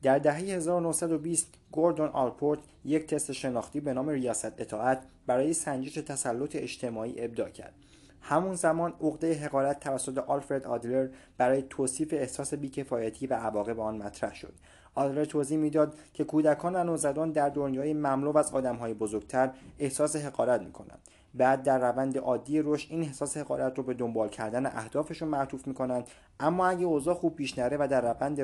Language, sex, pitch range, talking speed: Persian, male, 125-155 Hz, 155 wpm